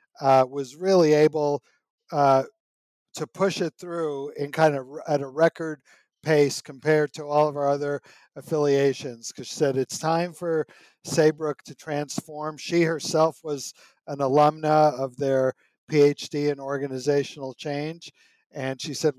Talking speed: 145 wpm